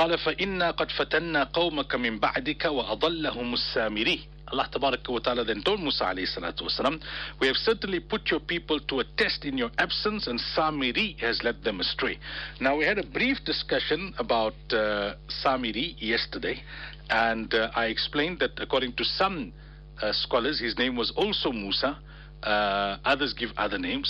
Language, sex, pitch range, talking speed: English, male, 120-150 Hz, 135 wpm